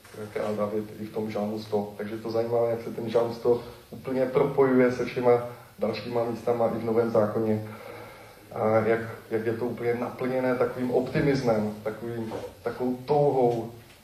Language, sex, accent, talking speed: Czech, male, native, 150 wpm